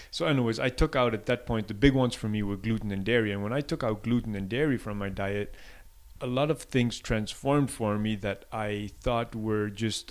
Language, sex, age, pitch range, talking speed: English, male, 30-49, 105-120 Hz, 235 wpm